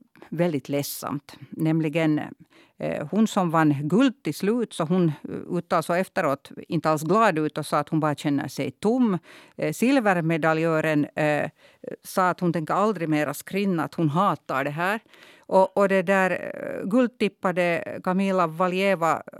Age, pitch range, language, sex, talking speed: 50-69, 145-195 Hz, Swedish, female, 155 wpm